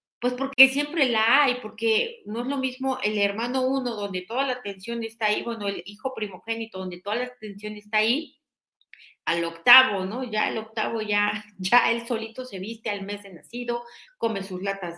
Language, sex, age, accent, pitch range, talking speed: Spanish, female, 40-59, Mexican, 185-230 Hz, 190 wpm